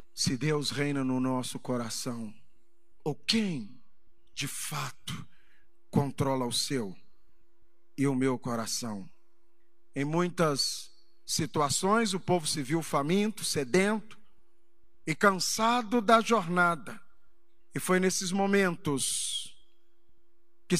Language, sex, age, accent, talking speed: Portuguese, male, 50-69, Brazilian, 100 wpm